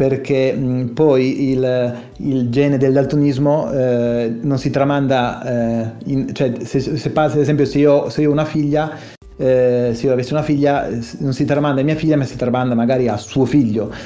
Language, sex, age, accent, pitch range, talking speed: Italian, male, 30-49, native, 120-145 Hz, 190 wpm